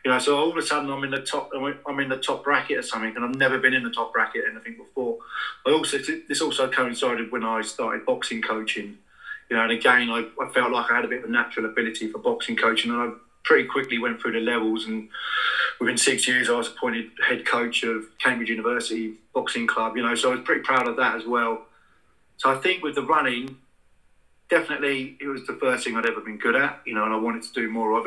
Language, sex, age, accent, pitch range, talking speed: English, male, 30-49, British, 115-140 Hz, 250 wpm